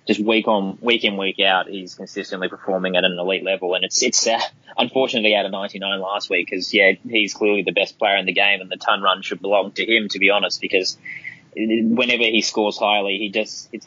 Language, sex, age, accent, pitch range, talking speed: English, male, 20-39, Australian, 95-105 Hz, 230 wpm